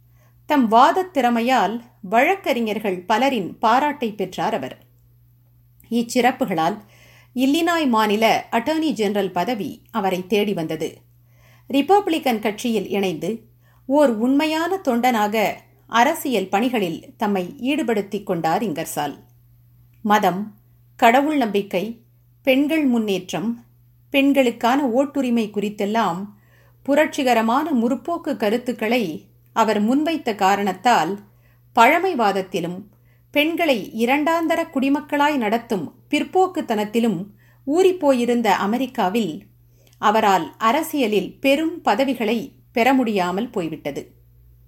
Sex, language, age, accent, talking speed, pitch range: female, Tamil, 50-69, native, 75 wpm, 180-270 Hz